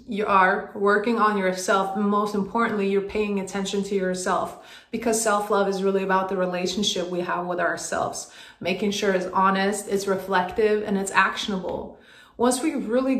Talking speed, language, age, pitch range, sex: 165 wpm, English, 20-39, 200-245 Hz, female